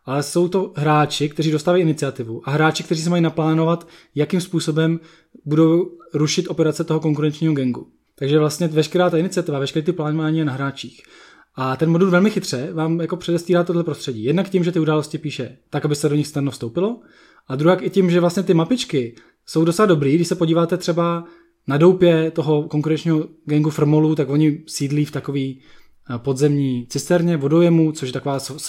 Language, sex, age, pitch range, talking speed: Czech, male, 20-39, 140-165 Hz, 185 wpm